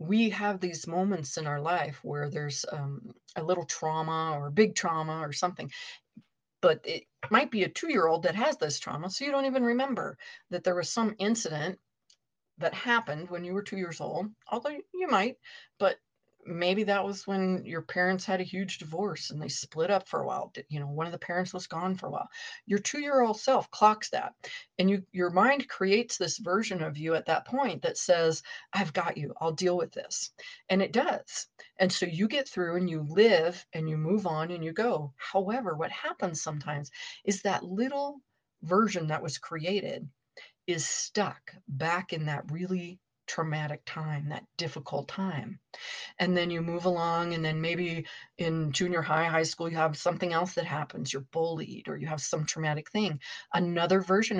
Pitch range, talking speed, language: 160-210 Hz, 190 wpm, English